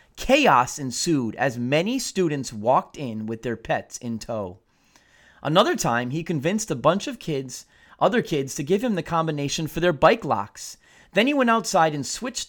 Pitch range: 125-175 Hz